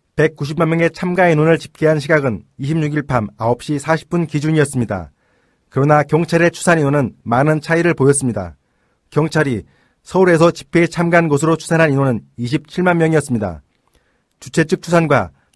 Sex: male